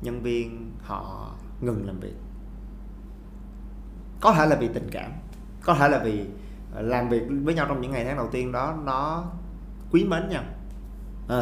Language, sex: Vietnamese, male